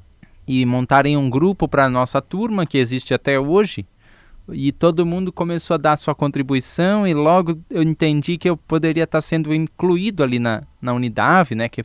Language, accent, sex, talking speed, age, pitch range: Portuguese, Brazilian, male, 180 wpm, 10-29, 125-165 Hz